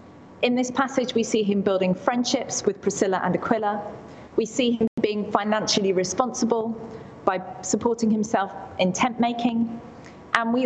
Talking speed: 145 wpm